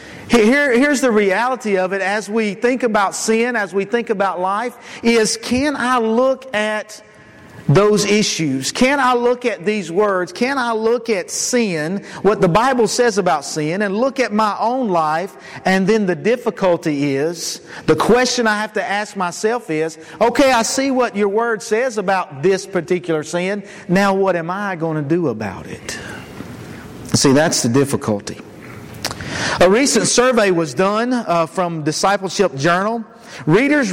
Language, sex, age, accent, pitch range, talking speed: English, male, 50-69, American, 170-230 Hz, 165 wpm